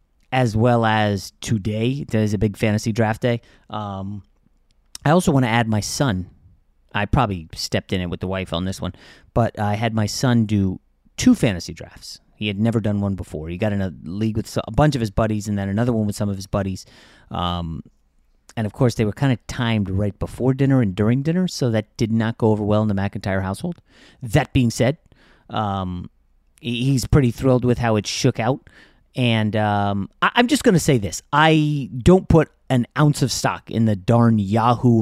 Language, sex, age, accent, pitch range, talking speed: English, male, 30-49, American, 105-140 Hz, 210 wpm